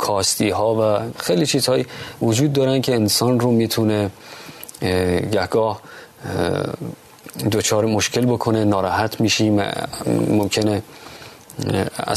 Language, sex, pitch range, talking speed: Persian, male, 100-120 Hz, 90 wpm